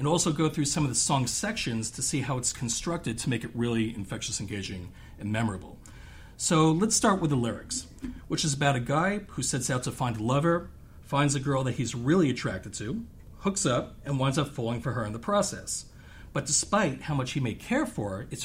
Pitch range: 115-155 Hz